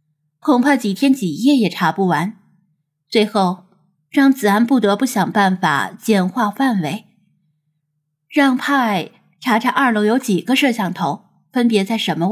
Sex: female